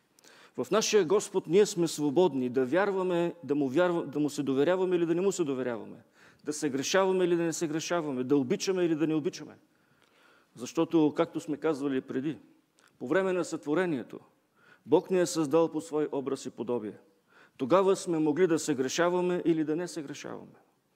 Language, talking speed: English, 185 wpm